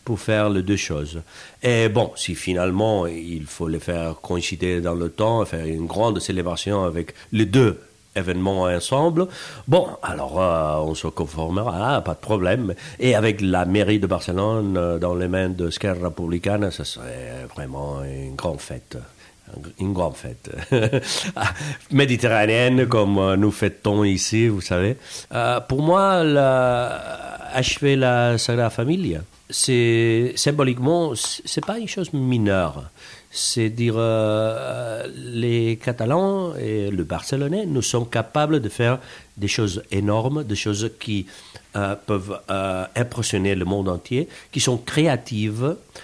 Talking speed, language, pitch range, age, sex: 140 wpm, French, 95-125 Hz, 50-69, male